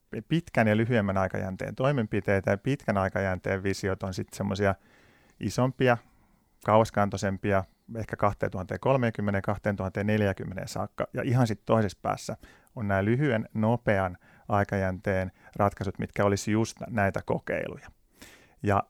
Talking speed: 110 wpm